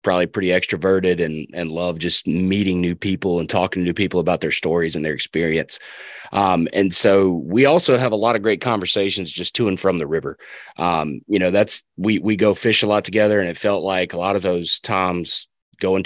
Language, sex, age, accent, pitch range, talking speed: English, male, 30-49, American, 90-105 Hz, 220 wpm